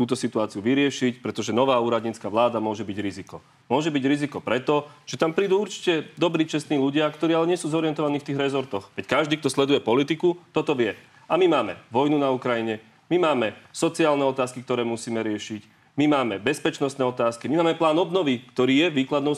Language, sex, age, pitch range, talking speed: Slovak, male, 30-49, 120-150 Hz, 185 wpm